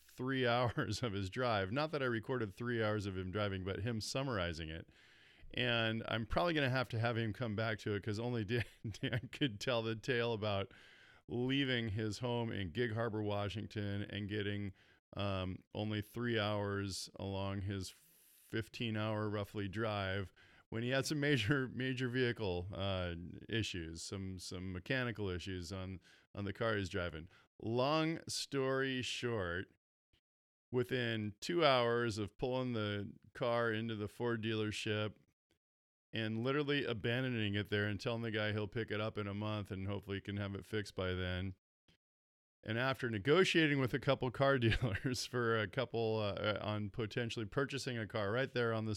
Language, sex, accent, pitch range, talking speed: English, male, American, 100-125 Hz, 165 wpm